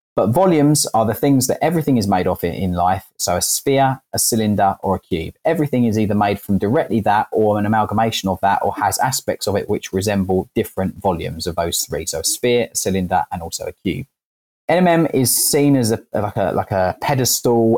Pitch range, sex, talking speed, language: 100-125 Hz, male, 205 wpm, English